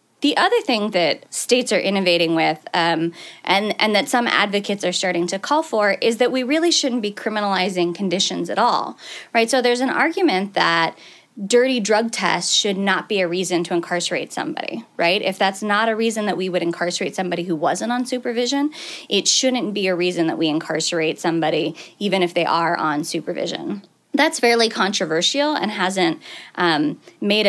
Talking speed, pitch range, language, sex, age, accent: 180 wpm, 175-235 Hz, English, female, 20-39, American